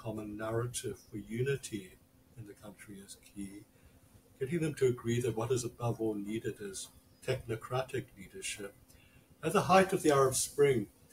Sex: male